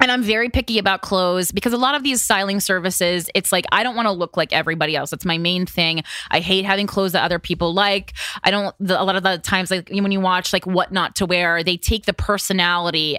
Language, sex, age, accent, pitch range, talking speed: English, female, 20-39, American, 170-210 Hz, 255 wpm